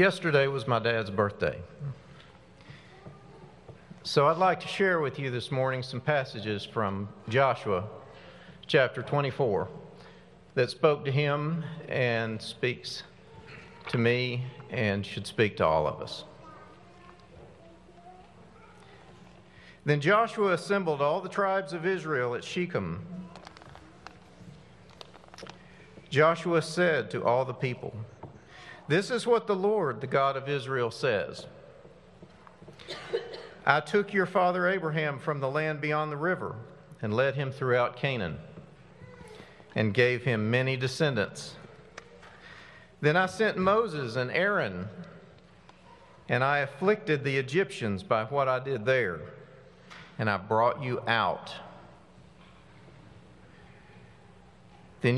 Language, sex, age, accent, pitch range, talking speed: English, male, 50-69, American, 120-170 Hz, 115 wpm